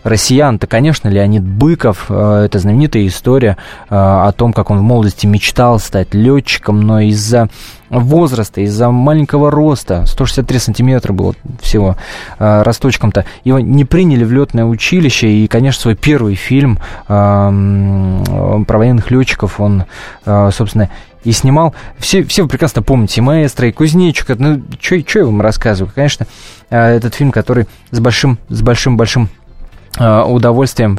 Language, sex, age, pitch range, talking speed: Russian, male, 20-39, 105-130 Hz, 145 wpm